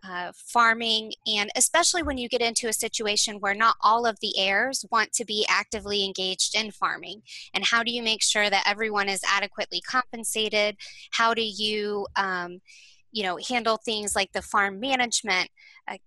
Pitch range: 200-235 Hz